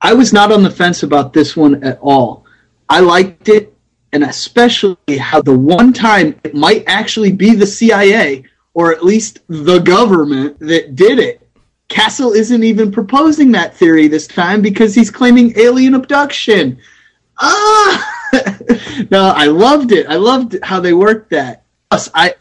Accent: American